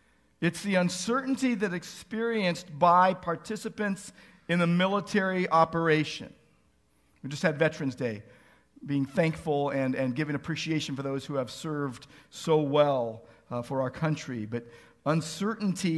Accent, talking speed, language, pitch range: American, 130 wpm, English, 150-195 Hz